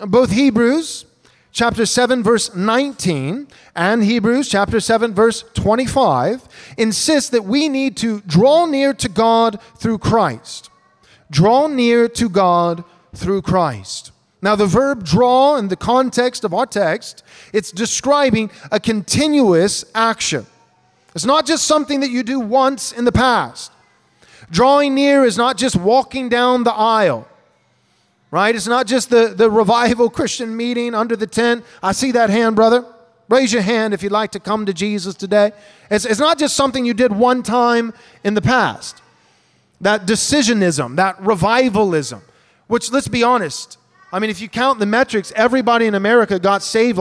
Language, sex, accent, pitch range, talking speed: English, male, American, 205-250 Hz, 160 wpm